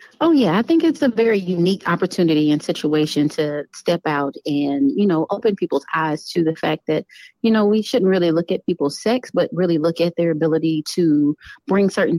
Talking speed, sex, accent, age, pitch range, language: 205 wpm, female, American, 30-49, 160-185 Hz, English